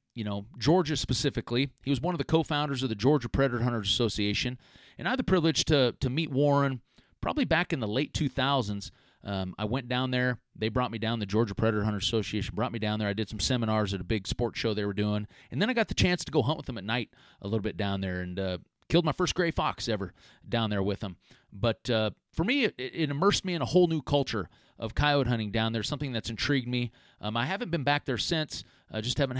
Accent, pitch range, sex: American, 110-145 Hz, male